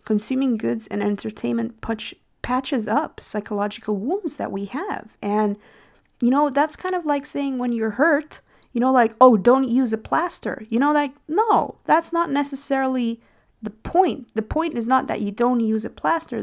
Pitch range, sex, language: 205-260 Hz, female, English